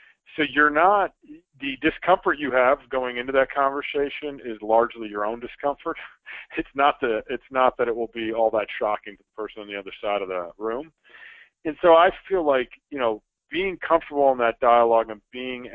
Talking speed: 200 wpm